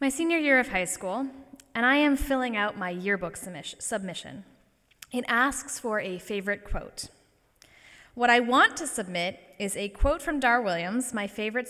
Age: 10-29